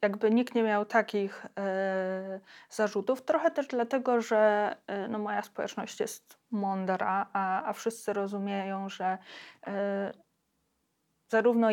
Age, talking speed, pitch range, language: 20-39, 100 wpm, 200-230 Hz, Polish